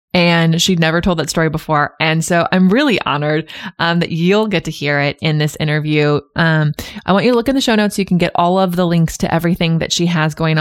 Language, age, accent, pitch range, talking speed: English, 20-39, American, 155-190 Hz, 260 wpm